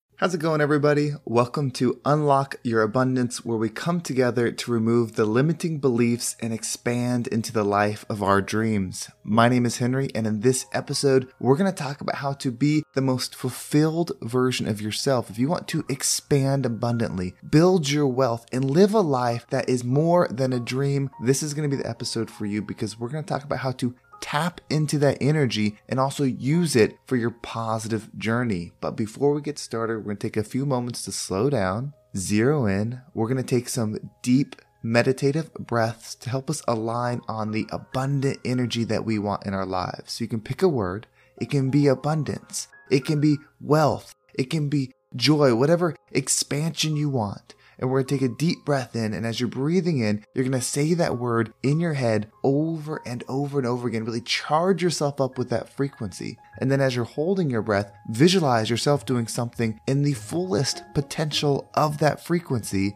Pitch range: 110-145 Hz